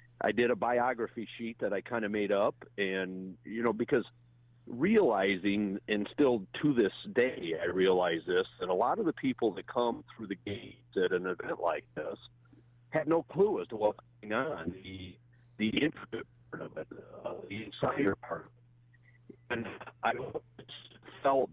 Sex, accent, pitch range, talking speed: male, American, 100-125 Hz, 170 wpm